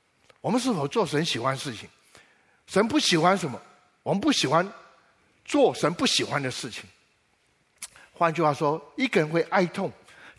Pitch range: 160-235 Hz